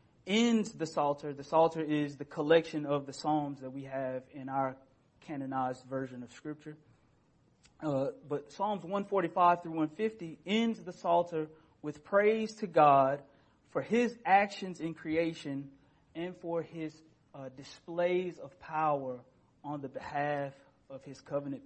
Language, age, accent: English, 30-49, American